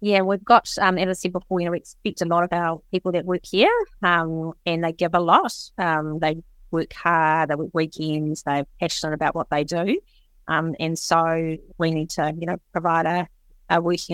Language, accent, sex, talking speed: English, Australian, female, 215 wpm